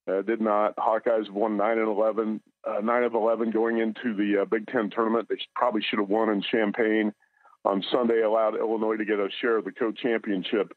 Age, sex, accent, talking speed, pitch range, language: 50-69, male, American, 210 wpm, 105-120 Hz, English